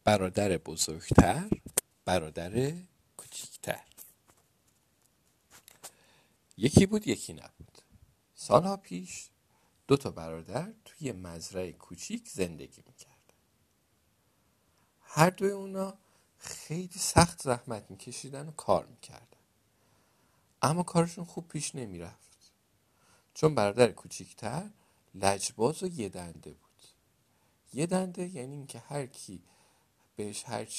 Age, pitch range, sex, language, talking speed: 50-69, 100-155 Hz, male, Persian, 90 wpm